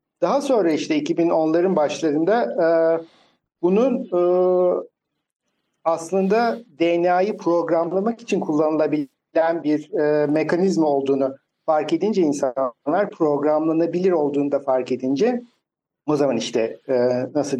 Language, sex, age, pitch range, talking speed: Turkish, male, 60-79, 140-185 Hz, 90 wpm